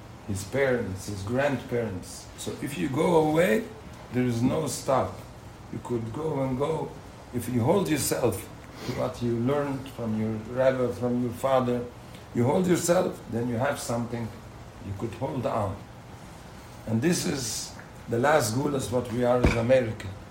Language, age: English, 50-69